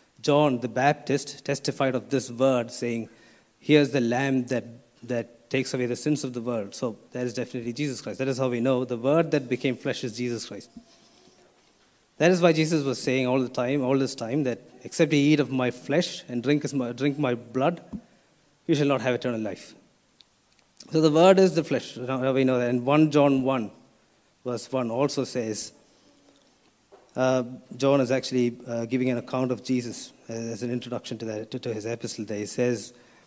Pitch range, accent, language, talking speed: 120-140 Hz, native, Malayalam, 200 wpm